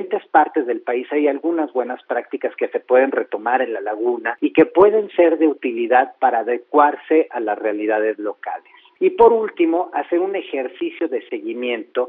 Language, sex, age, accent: Spanish, male, 40-59, Mexican